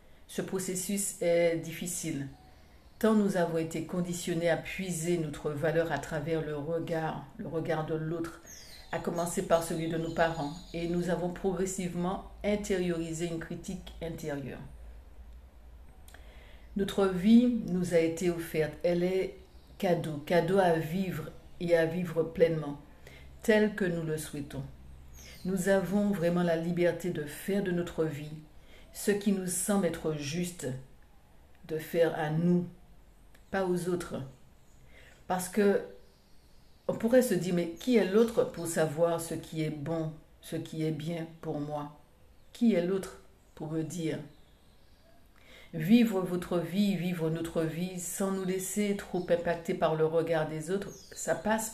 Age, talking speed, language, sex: 60-79, 145 wpm, French, female